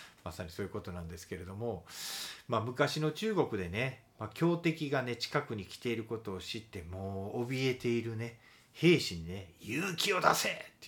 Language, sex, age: Japanese, male, 40-59